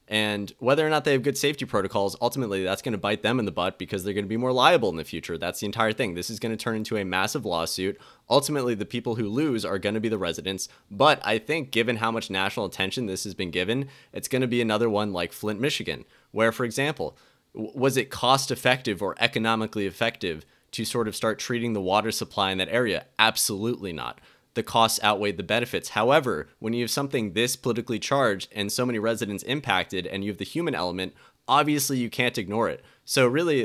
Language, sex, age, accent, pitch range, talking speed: English, male, 20-39, American, 100-125 Hz, 225 wpm